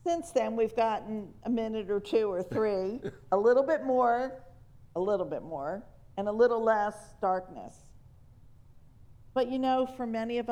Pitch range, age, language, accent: 185-225 Hz, 50-69, English, American